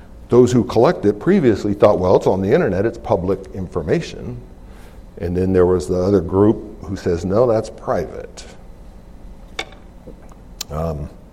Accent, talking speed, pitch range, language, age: American, 145 wpm, 95-145 Hz, English, 60-79